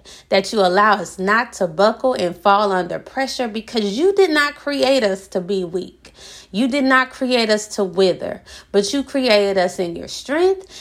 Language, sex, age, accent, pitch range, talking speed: English, female, 30-49, American, 185-230 Hz, 190 wpm